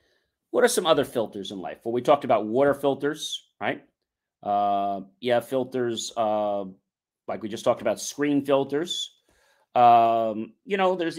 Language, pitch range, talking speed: English, 125-175 Hz, 155 wpm